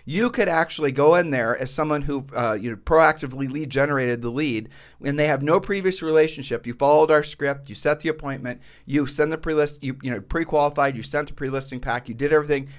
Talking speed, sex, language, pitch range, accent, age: 220 wpm, male, English, 135-160 Hz, American, 40-59